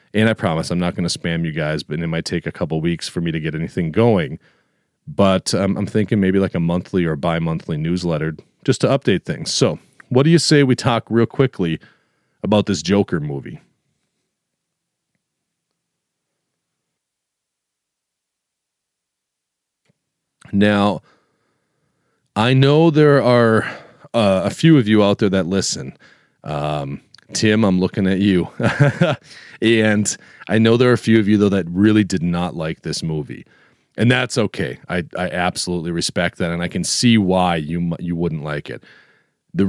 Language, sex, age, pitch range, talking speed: English, male, 40-59, 85-110 Hz, 160 wpm